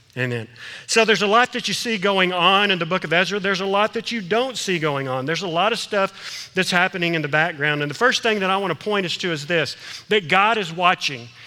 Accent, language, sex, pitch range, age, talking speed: American, English, male, 150-205 Hz, 40-59, 265 wpm